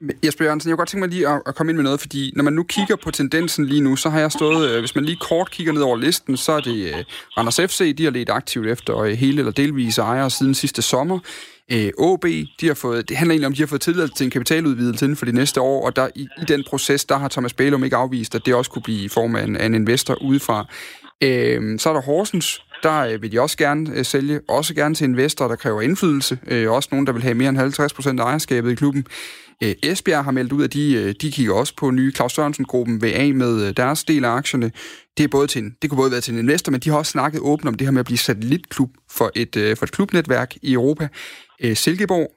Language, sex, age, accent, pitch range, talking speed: Danish, male, 30-49, native, 125-150 Hz, 245 wpm